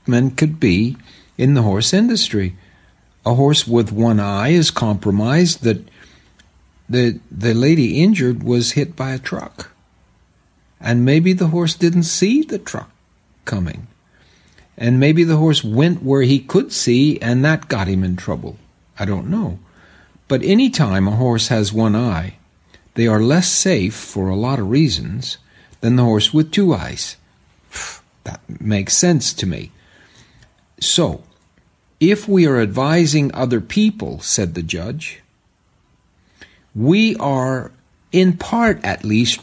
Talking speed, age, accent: 145 wpm, 60-79, American